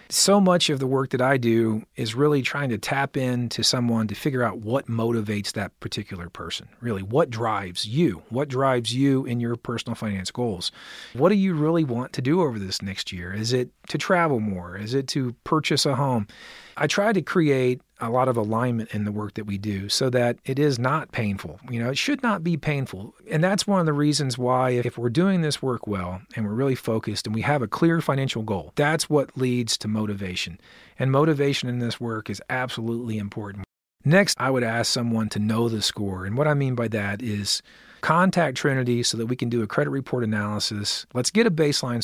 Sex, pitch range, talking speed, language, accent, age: male, 115-145 Hz, 215 wpm, English, American, 40-59